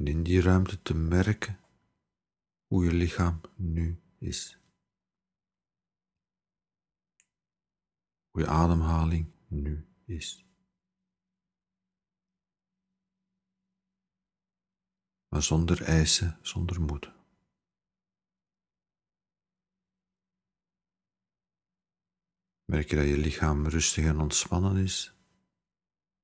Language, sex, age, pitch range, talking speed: Dutch, male, 50-69, 80-95 Hz, 70 wpm